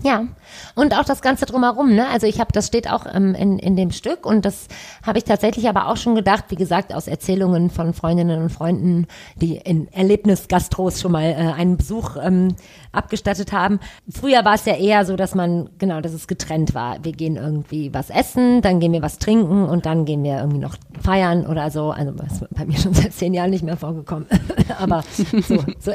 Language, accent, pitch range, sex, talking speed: German, German, 165-205 Hz, female, 215 wpm